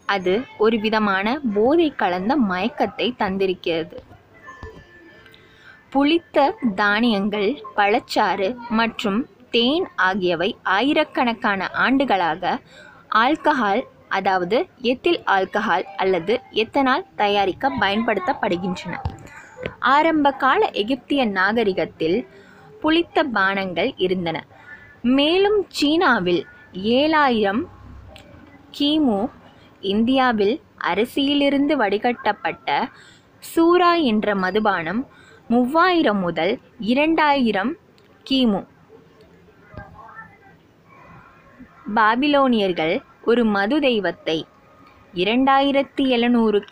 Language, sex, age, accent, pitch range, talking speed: Tamil, female, 20-39, native, 200-280 Hz, 65 wpm